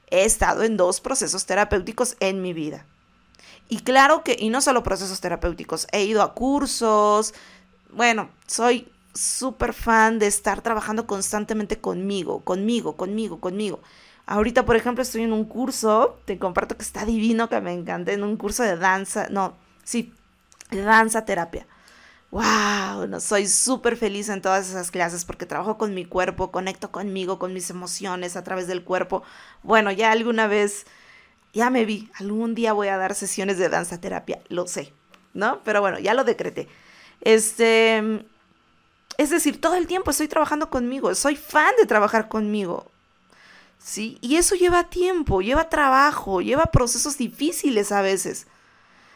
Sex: female